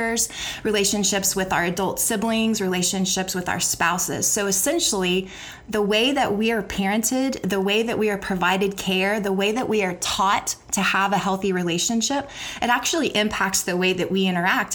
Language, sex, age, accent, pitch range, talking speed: English, female, 20-39, American, 185-220 Hz, 175 wpm